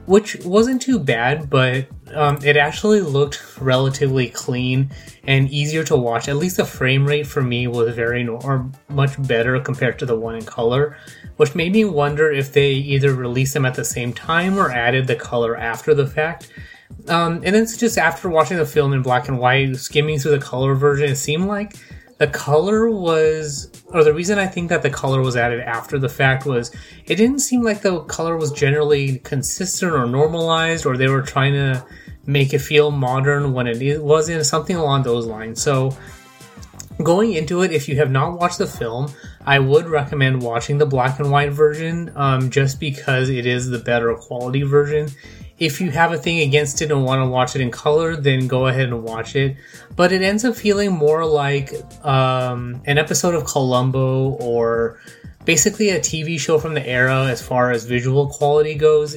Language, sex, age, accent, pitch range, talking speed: English, male, 20-39, American, 130-155 Hz, 195 wpm